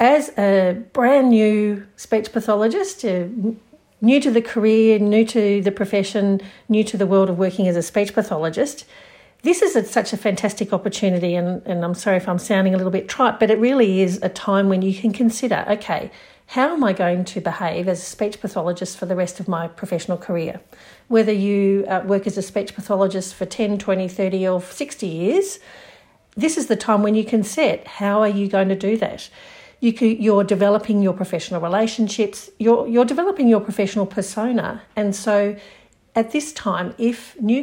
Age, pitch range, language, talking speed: 50-69, 190-225 Hz, English, 190 wpm